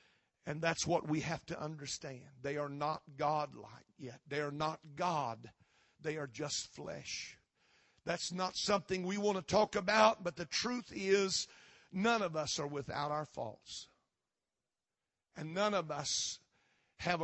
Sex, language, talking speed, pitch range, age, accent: male, English, 155 wpm, 150-230 Hz, 50-69, American